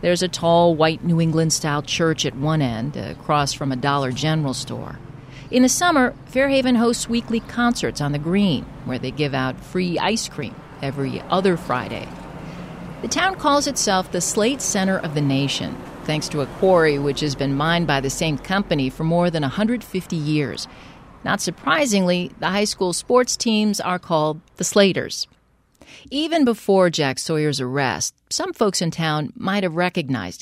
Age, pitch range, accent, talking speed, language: 40-59, 145-210 Hz, American, 170 wpm, English